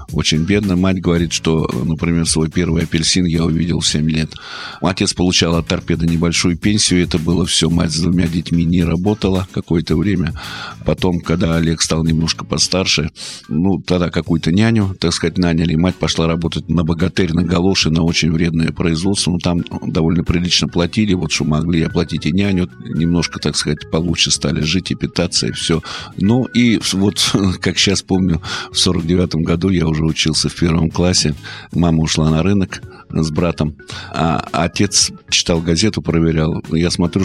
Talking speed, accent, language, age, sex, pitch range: 170 wpm, native, Russian, 50-69, male, 80-95 Hz